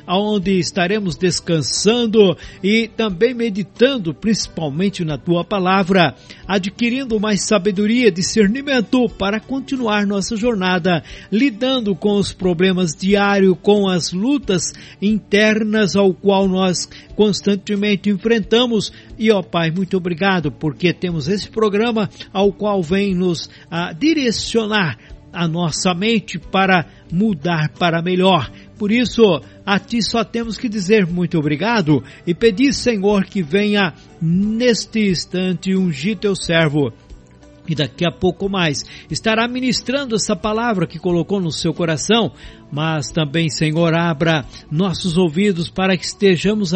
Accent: Brazilian